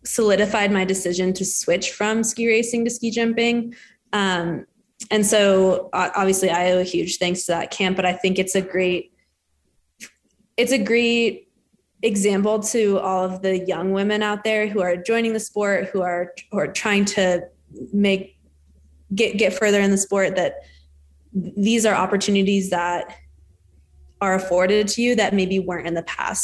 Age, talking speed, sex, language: 20-39, 170 wpm, female, English